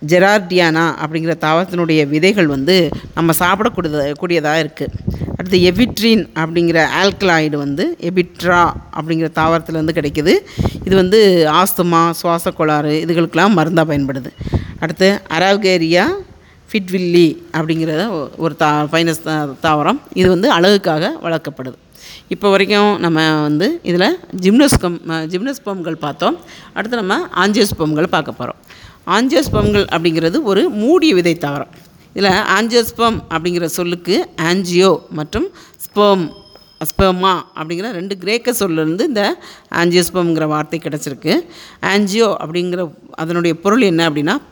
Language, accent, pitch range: Tamil, native, 160-195 Hz